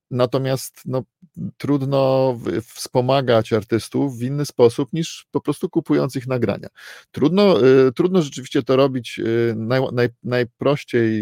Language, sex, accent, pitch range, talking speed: Polish, male, native, 105-125 Hz, 130 wpm